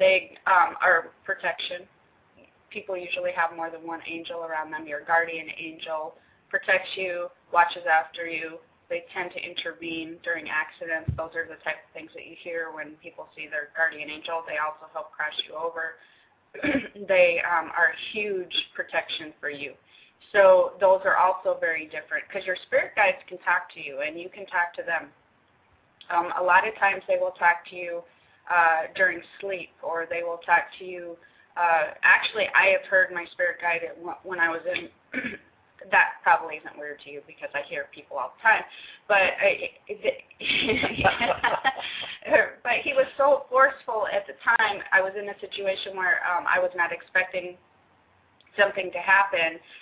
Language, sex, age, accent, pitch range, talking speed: English, female, 20-39, American, 165-200 Hz, 170 wpm